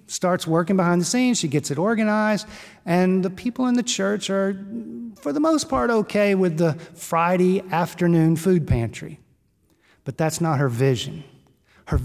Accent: American